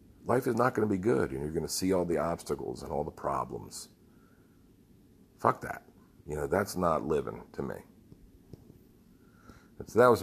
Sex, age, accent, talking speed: male, 50-69, American, 190 wpm